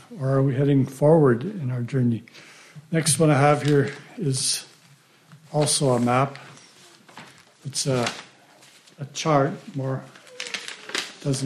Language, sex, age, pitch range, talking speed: English, male, 60-79, 140-160 Hz, 120 wpm